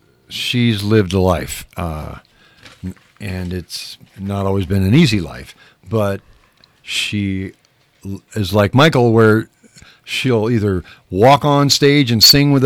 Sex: male